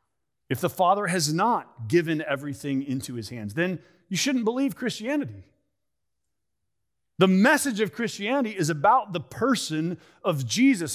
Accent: American